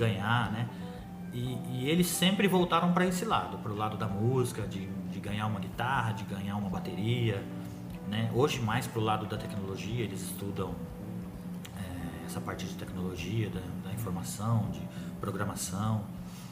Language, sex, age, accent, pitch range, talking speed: Portuguese, male, 40-59, Brazilian, 90-120 Hz, 160 wpm